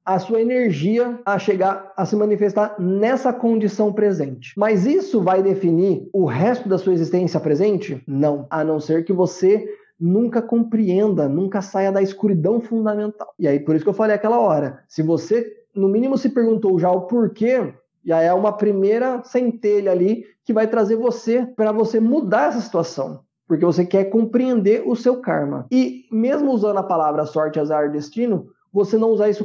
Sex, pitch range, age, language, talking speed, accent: male, 175-225 Hz, 20-39, Portuguese, 175 wpm, Brazilian